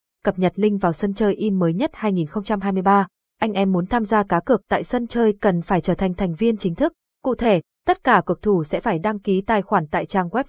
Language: Vietnamese